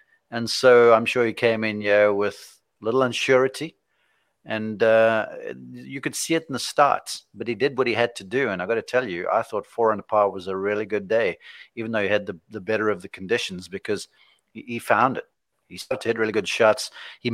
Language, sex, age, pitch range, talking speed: English, male, 40-59, 100-115 Hz, 230 wpm